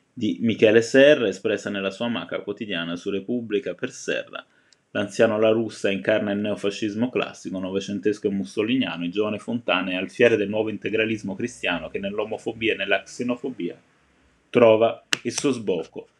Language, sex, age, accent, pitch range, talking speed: Italian, male, 20-39, native, 100-120 Hz, 150 wpm